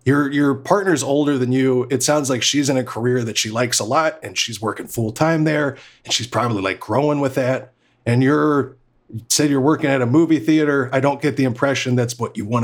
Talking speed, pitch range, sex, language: 235 wpm, 125-150 Hz, male, English